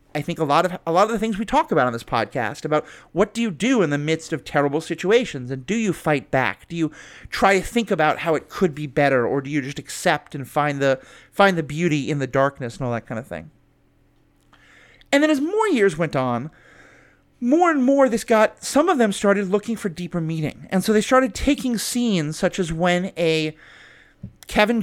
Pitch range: 150-215 Hz